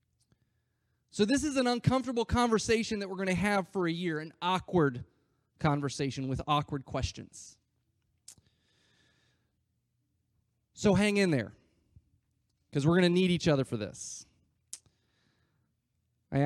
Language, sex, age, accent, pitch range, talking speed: English, male, 30-49, American, 115-160 Hz, 125 wpm